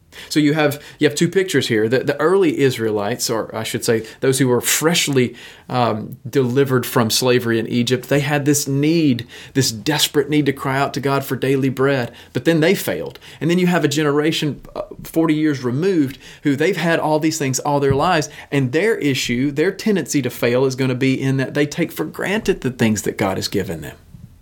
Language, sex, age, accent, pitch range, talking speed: English, male, 30-49, American, 115-150 Hz, 215 wpm